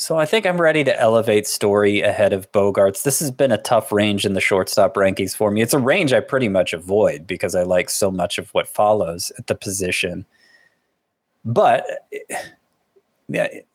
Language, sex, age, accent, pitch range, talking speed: English, male, 20-39, American, 100-140 Hz, 190 wpm